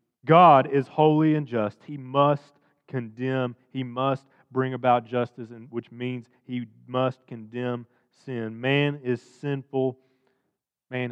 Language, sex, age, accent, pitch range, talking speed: English, male, 40-59, American, 110-145 Hz, 125 wpm